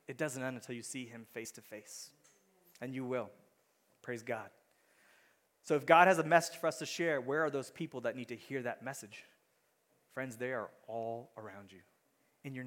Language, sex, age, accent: English, male, 30-49, American